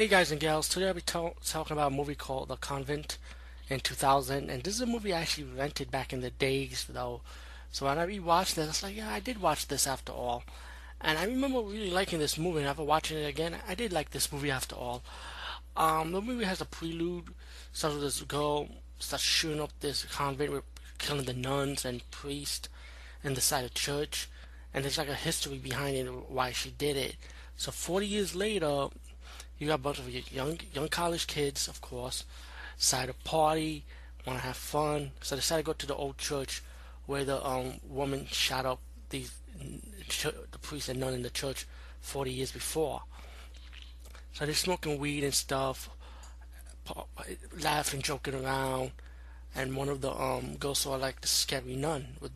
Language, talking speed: English, 195 wpm